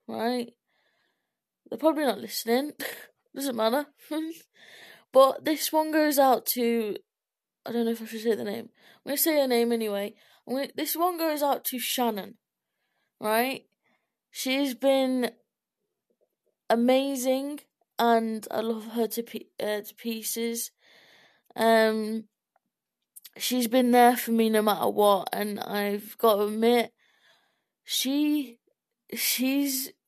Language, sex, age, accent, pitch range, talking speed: English, female, 20-39, British, 220-260 Hz, 120 wpm